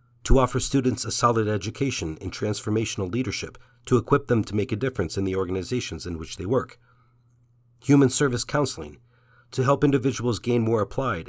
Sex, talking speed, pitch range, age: male, 170 wpm, 100-125 Hz, 40-59